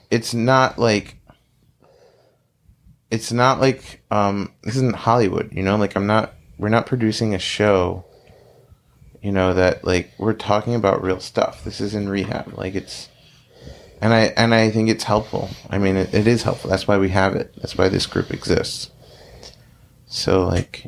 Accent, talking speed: American, 170 wpm